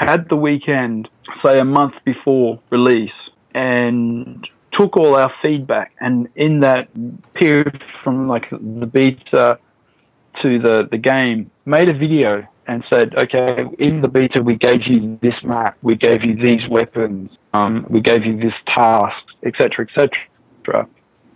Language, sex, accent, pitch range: English, male, Australian, 120-145 Hz